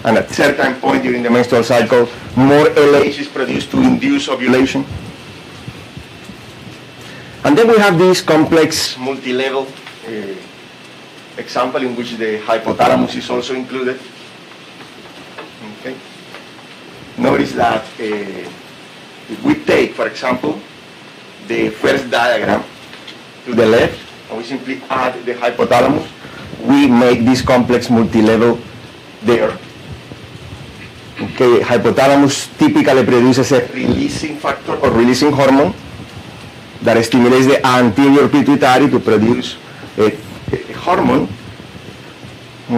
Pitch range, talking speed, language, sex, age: 120-140 Hz, 110 wpm, English, male, 40-59